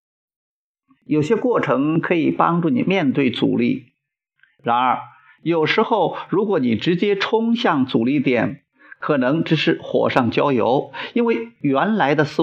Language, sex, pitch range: Chinese, male, 135-215 Hz